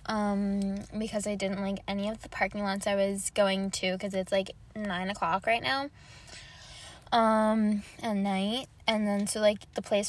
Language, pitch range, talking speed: English, 200-235 Hz, 185 wpm